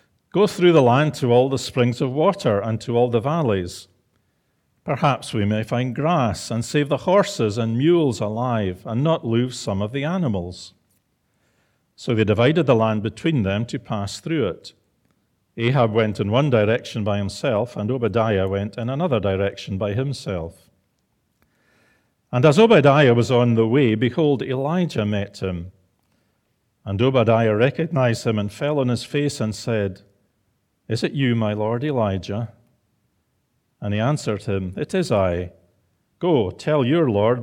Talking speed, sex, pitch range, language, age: 160 wpm, male, 105-140 Hz, English, 40-59